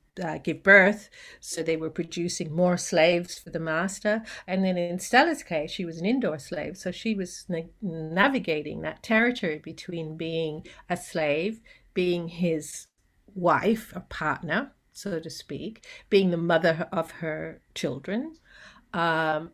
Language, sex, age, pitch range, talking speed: English, female, 50-69, 160-195 Hz, 145 wpm